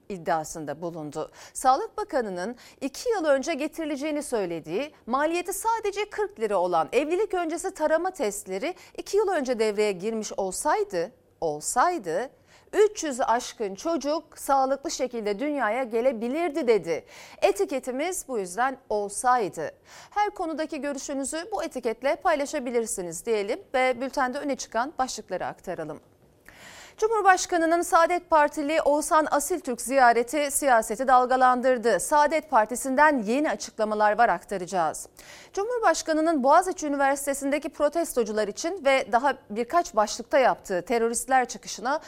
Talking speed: 110 wpm